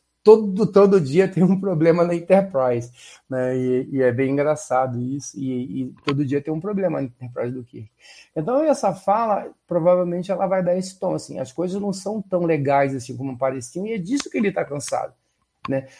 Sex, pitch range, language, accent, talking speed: male, 130-180 Hz, Portuguese, Brazilian, 200 wpm